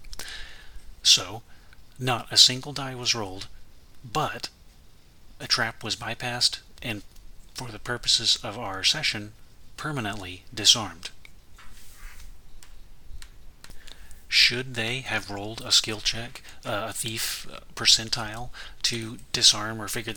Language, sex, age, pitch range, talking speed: English, male, 40-59, 95-125 Hz, 105 wpm